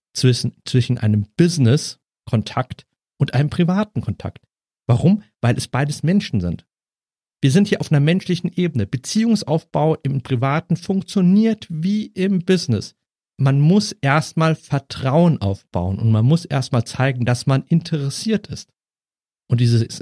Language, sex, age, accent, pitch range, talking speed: German, male, 50-69, German, 110-145 Hz, 130 wpm